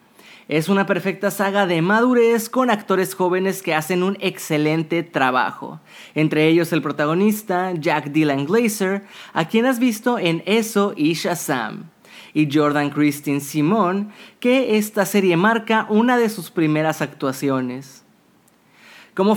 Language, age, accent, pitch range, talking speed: Spanish, 30-49, Mexican, 155-210 Hz, 135 wpm